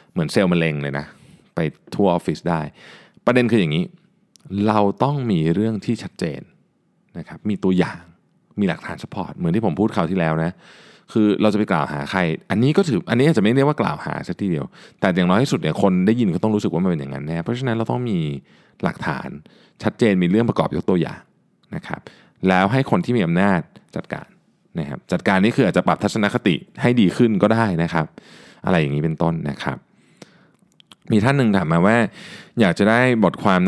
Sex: male